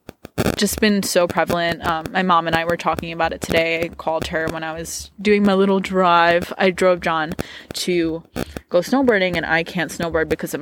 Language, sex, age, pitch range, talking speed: English, female, 20-39, 160-190 Hz, 205 wpm